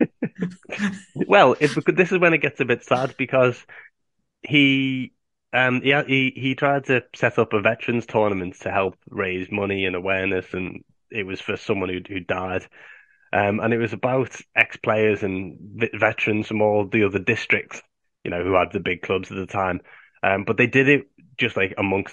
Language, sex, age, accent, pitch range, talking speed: English, male, 20-39, British, 95-115 Hz, 185 wpm